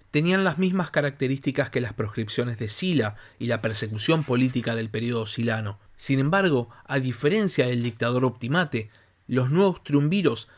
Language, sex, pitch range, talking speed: Spanish, male, 115-155 Hz, 150 wpm